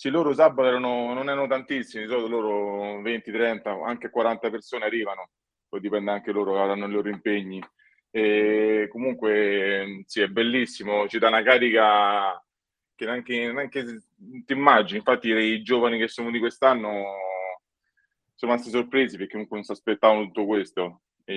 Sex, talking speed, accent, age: male, 155 wpm, native, 20-39